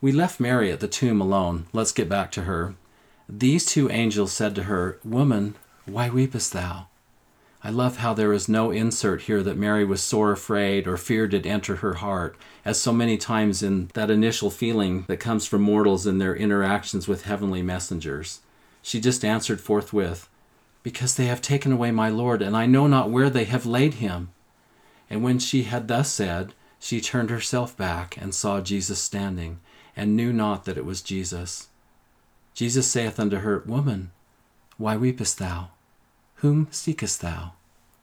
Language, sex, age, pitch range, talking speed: English, male, 40-59, 95-120 Hz, 175 wpm